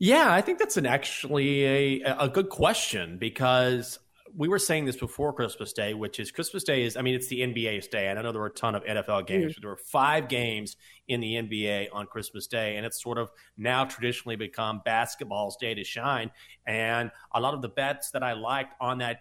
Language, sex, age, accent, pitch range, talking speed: English, male, 30-49, American, 115-145 Hz, 225 wpm